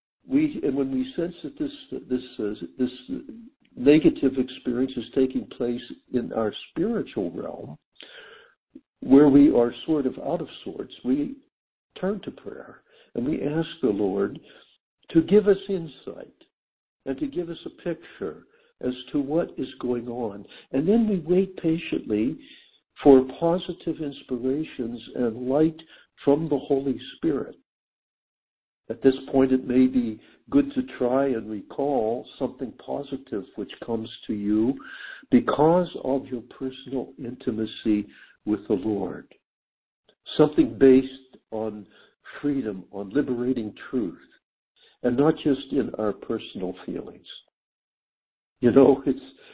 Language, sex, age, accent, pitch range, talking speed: English, male, 60-79, American, 120-160 Hz, 130 wpm